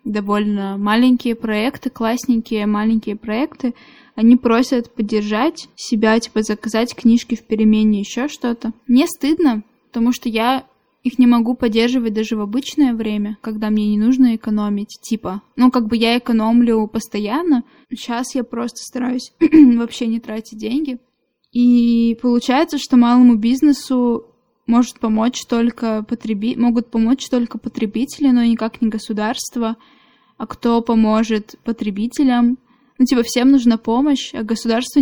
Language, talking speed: Russian, 135 wpm